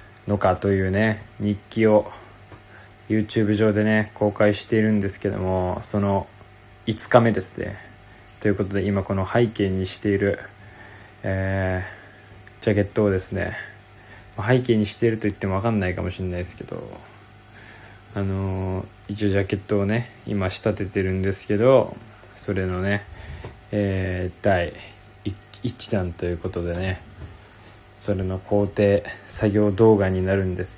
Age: 20-39